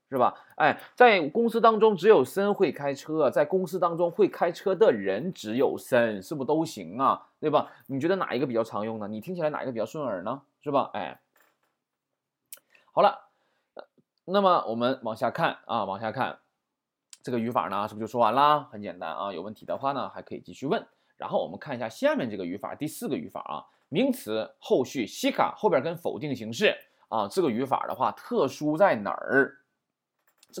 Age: 20-39